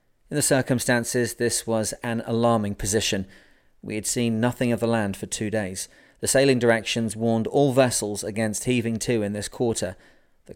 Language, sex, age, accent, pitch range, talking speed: English, male, 30-49, British, 105-120 Hz, 175 wpm